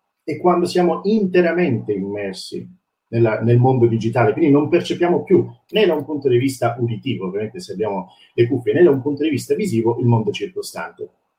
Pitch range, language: 115-175 Hz, Italian